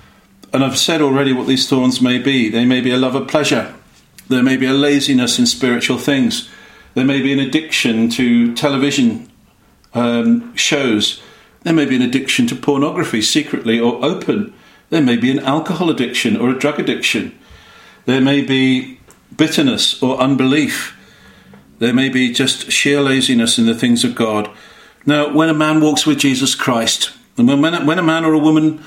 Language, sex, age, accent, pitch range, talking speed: English, male, 50-69, British, 125-155 Hz, 175 wpm